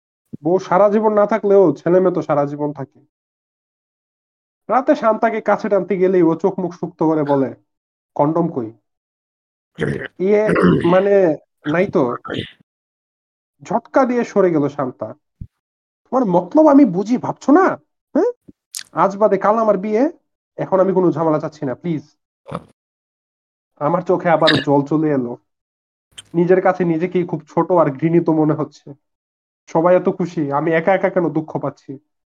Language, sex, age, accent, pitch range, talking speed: Bengali, male, 30-49, native, 140-190 Hz, 120 wpm